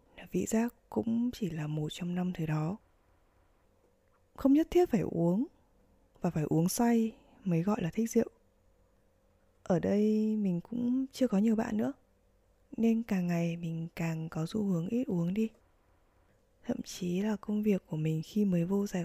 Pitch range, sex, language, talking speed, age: 155-220 Hz, female, Vietnamese, 175 wpm, 20-39